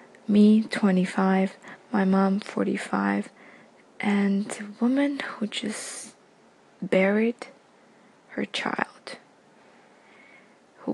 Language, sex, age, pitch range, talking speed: English, female, 20-39, 195-235 Hz, 75 wpm